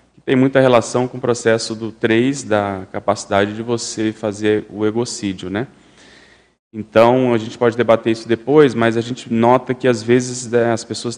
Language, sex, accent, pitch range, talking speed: Portuguese, male, Brazilian, 105-120 Hz, 170 wpm